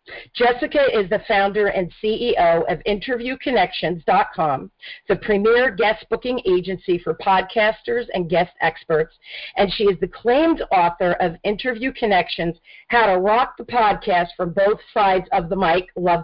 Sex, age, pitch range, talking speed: female, 50-69, 185-250 Hz, 145 wpm